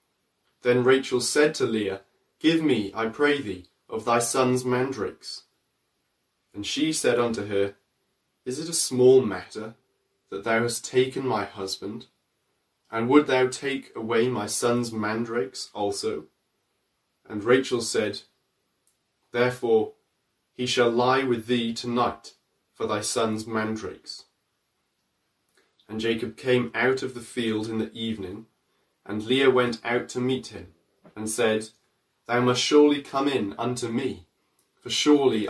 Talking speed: 135 wpm